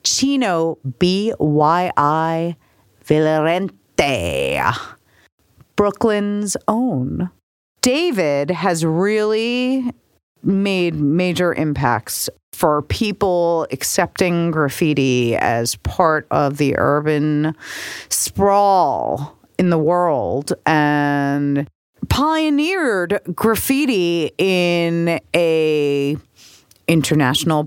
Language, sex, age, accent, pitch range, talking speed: English, female, 30-49, American, 135-180 Hz, 65 wpm